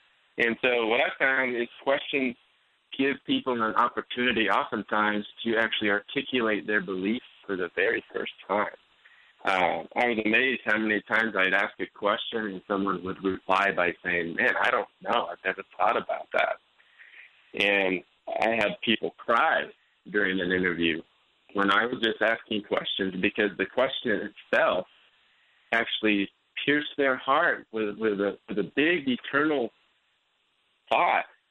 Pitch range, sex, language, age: 100-120 Hz, male, English, 30-49